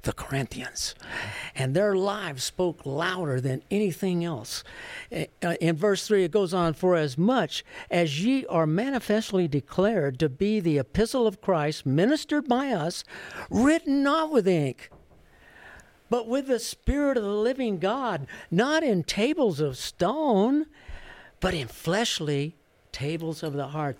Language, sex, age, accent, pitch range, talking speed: English, male, 60-79, American, 145-220 Hz, 145 wpm